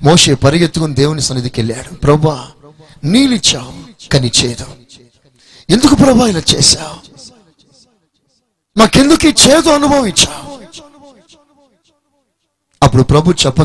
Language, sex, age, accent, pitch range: Telugu, male, 30-49, native, 120-155 Hz